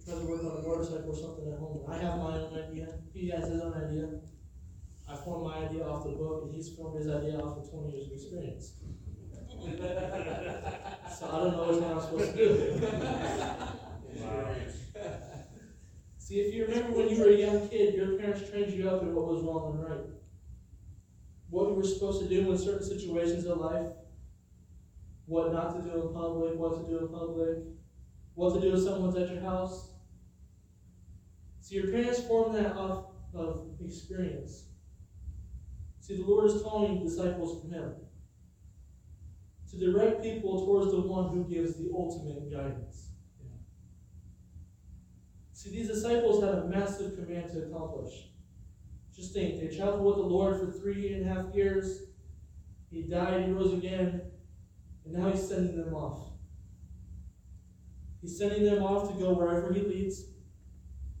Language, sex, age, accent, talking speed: English, male, 20-39, American, 170 wpm